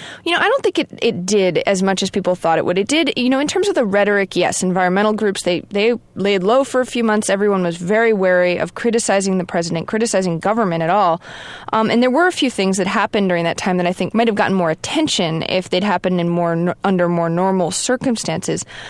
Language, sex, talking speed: English, female, 240 wpm